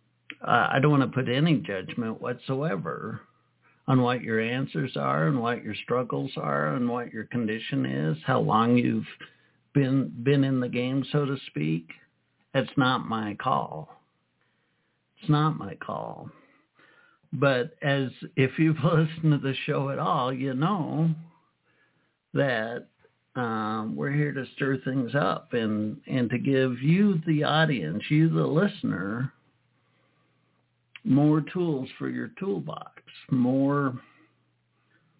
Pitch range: 120-150 Hz